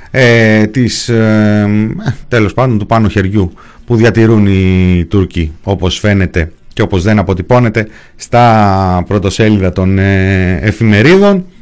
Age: 30-49